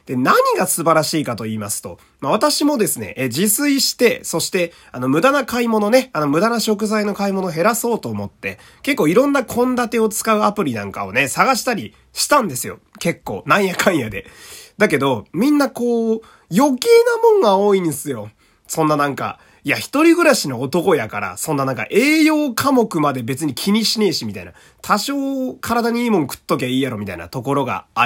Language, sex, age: Japanese, male, 30-49